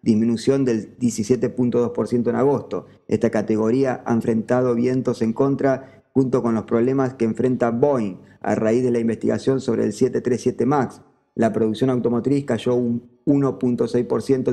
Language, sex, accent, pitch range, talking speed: Spanish, male, Argentinian, 115-130 Hz, 140 wpm